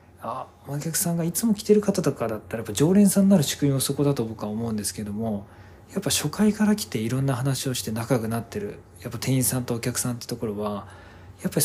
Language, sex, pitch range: Japanese, male, 110-155 Hz